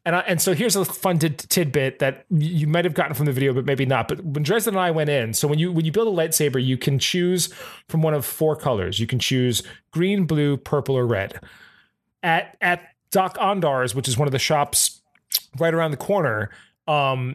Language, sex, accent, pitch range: English, male, American, 130-160 Hz